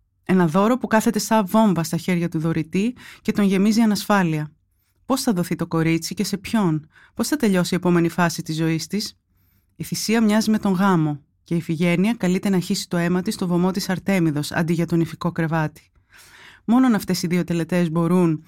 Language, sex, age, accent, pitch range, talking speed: Greek, female, 30-49, native, 165-200 Hz, 200 wpm